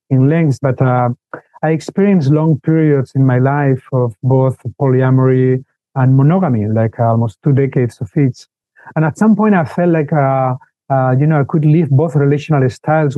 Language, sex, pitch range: English, male, 130-160 Hz